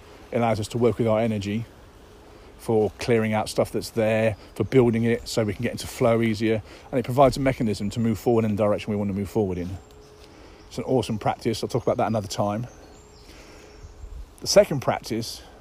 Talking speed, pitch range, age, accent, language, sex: 205 wpm, 95-115 Hz, 40-59, British, English, male